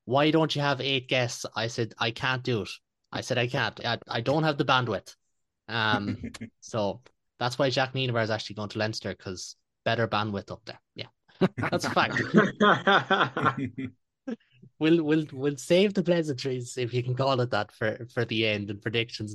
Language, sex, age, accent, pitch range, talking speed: English, male, 20-39, Irish, 110-140 Hz, 185 wpm